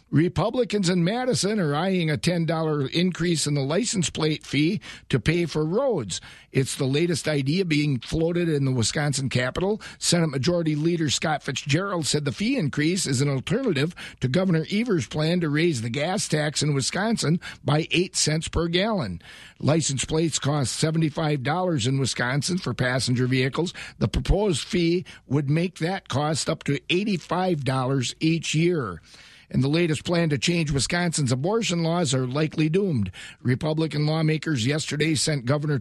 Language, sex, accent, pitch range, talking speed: English, male, American, 140-170 Hz, 155 wpm